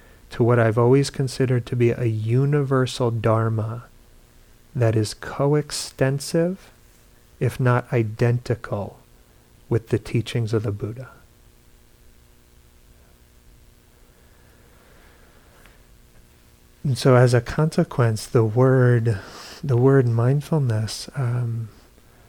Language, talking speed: English, 85 wpm